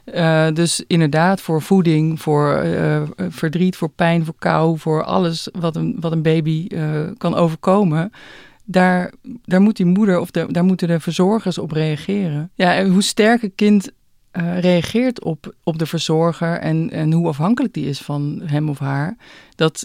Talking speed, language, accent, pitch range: 175 wpm, Dutch, Dutch, 150-180 Hz